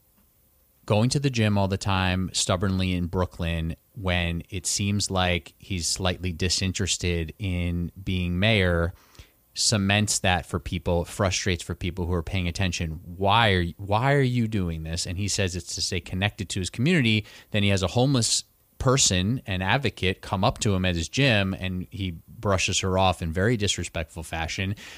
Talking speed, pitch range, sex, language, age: 175 wpm, 90-120 Hz, male, English, 30-49